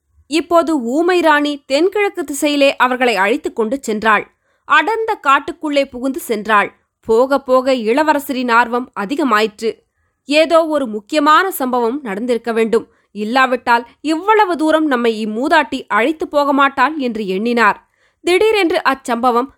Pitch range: 235-315 Hz